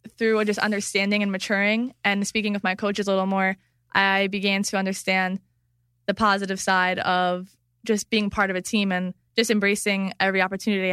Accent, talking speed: American, 175 wpm